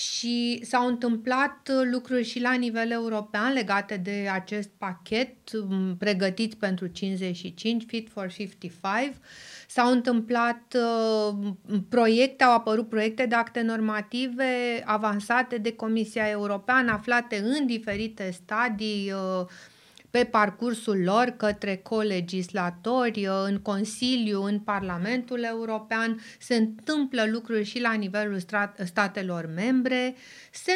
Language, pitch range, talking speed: Romanian, 200-245 Hz, 105 wpm